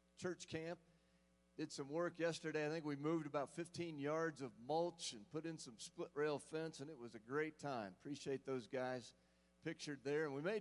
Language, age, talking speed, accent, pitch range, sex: English, 40-59, 205 wpm, American, 105-160 Hz, male